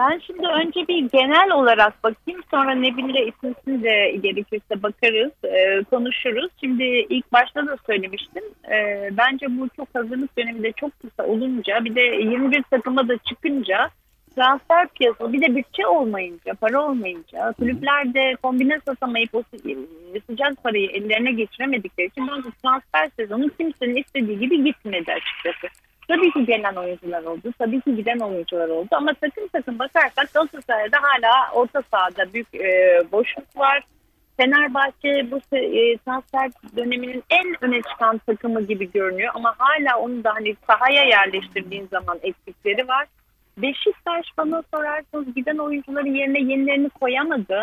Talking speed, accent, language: 135 wpm, native, Turkish